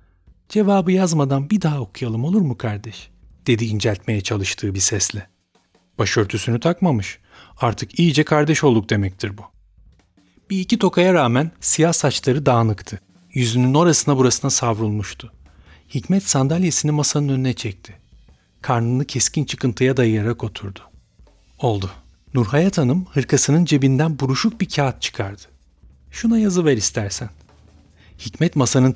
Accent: native